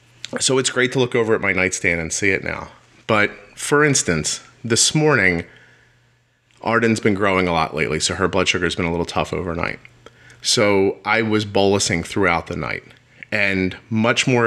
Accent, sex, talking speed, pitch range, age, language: American, male, 185 wpm, 90-115 Hz, 30-49, English